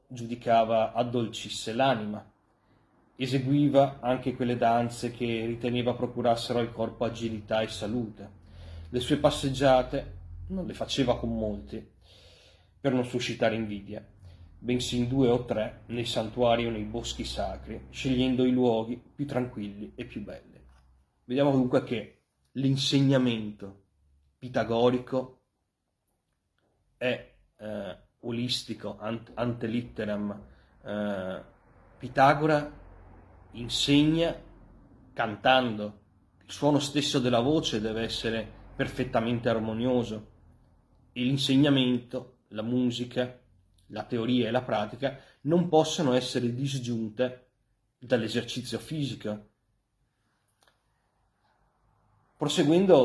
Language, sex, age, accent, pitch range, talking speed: Italian, male, 30-49, native, 105-125 Hz, 95 wpm